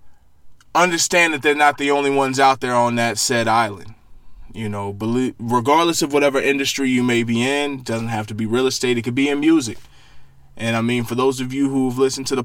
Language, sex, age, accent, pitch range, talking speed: English, male, 20-39, American, 110-135 Hz, 220 wpm